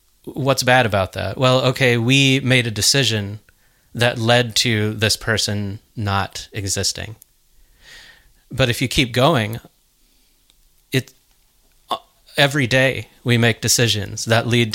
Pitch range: 110-135 Hz